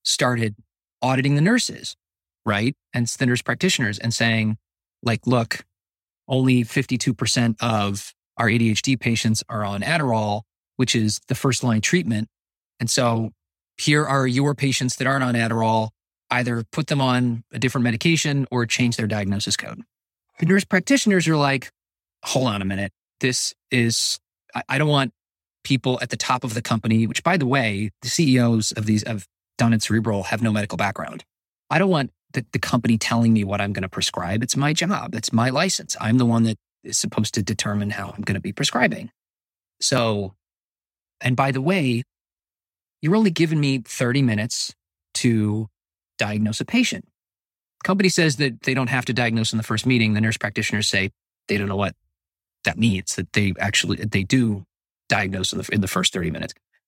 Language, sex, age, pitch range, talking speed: English, male, 20-39, 100-130 Hz, 180 wpm